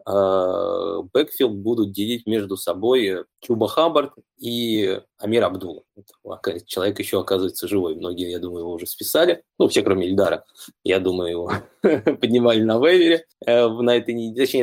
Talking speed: 135 wpm